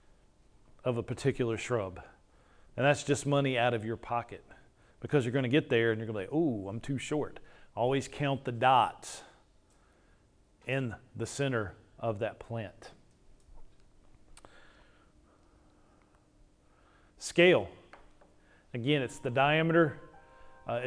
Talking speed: 120 wpm